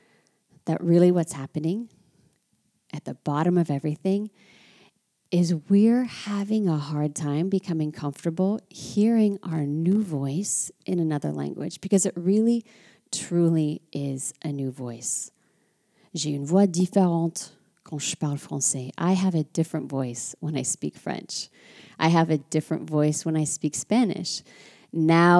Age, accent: 30-49, American